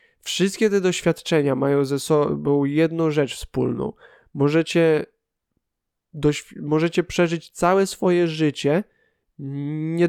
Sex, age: male, 20-39